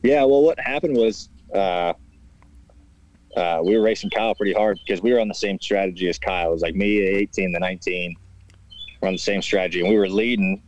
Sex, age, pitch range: male, 20-39, 85-110 Hz